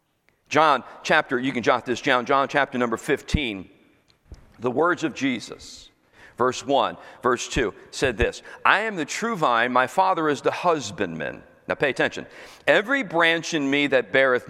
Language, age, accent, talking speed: English, 40-59, American, 165 wpm